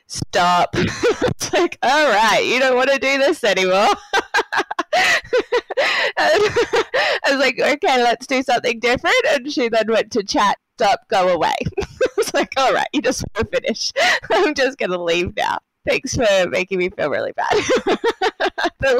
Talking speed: 165 wpm